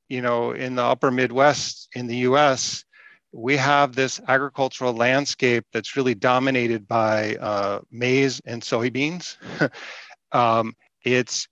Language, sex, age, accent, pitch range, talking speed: English, male, 50-69, American, 120-140 Hz, 125 wpm